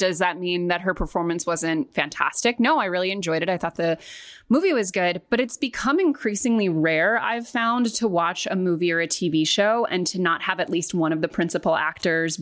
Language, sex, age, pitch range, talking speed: English, female, 20-39, 165-210 Hz, 220 wpm